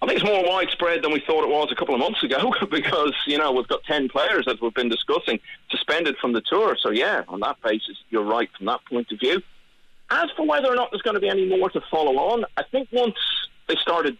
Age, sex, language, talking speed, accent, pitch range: 40-59, male, English, 260 wpm, British, 120-200 Hz